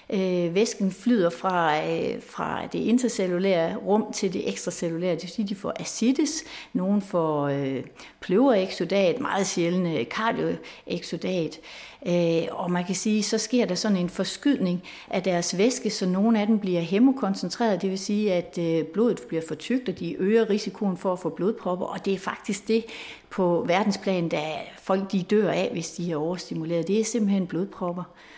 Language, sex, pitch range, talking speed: Danish, female, 175-215 Hz, 170 wpm